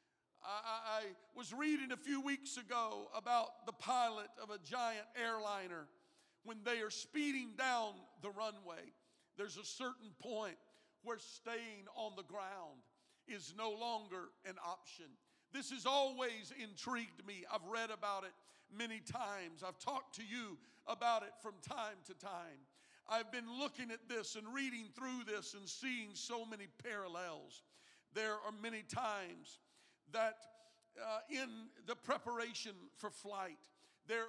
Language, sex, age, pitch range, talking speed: English, male, 50-69, 205-240 Hz, 145 wpm